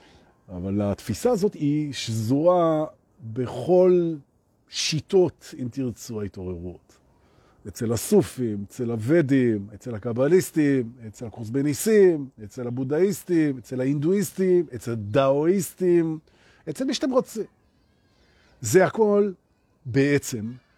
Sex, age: male, 40-59